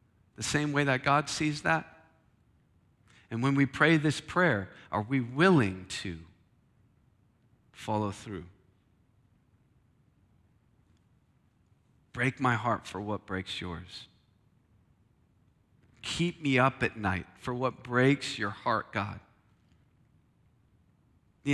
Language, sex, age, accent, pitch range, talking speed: English, male, 40-59, American, 105-135 Hz, 105 wpm